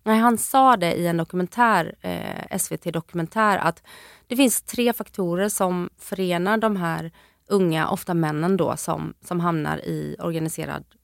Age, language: 30-49, Swedish